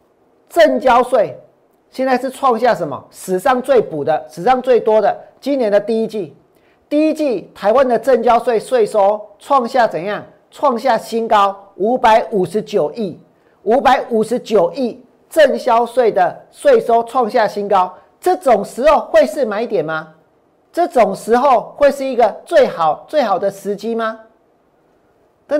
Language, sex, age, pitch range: Chinese, male, 40-59, 205-265 Hz